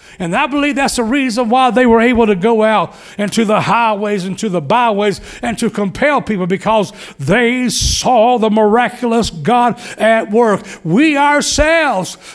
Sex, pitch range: male, 205-260 Hz